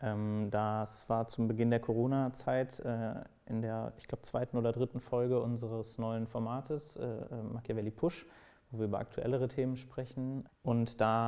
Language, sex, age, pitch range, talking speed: German, male, 30-49, 110-125 Hz, 140 wpm